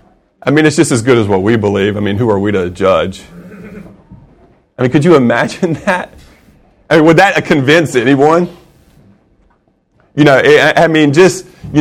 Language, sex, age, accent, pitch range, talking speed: English, male, 30-49, American, 105-145 Hz, 180 wpm